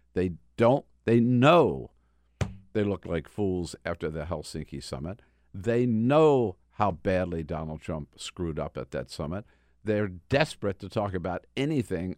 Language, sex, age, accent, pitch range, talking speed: English, male, 50-69, American, 80-110 Hz, 145 wpm